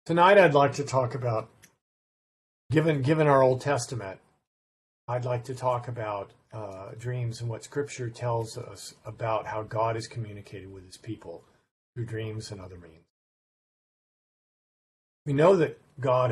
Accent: American